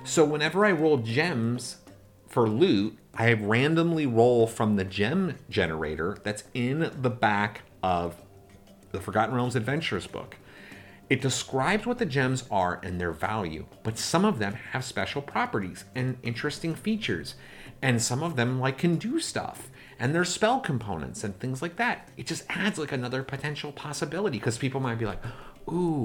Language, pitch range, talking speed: English, 105-145 Hz, 165 wpm